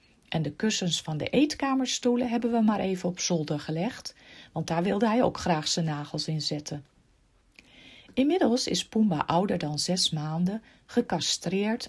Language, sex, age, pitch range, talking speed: Dutch, female, 40-59, 155-220 Hz, 155 wpm